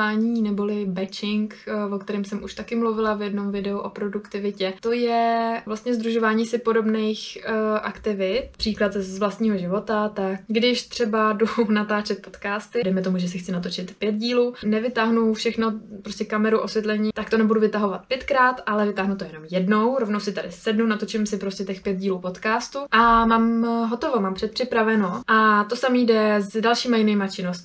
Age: 20-39